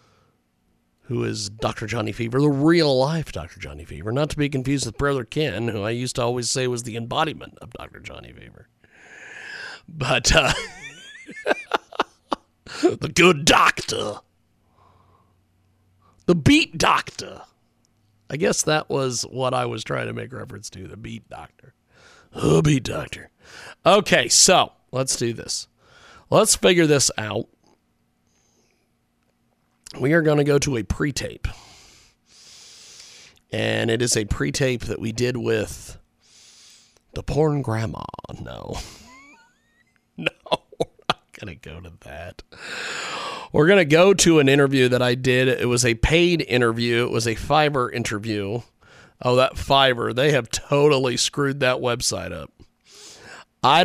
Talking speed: 140 wpm